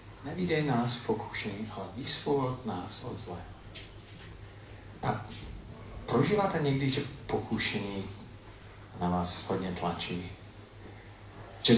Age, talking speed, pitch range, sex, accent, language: 40-59, 90 wpm, 100-115 Hz, male, native, Czech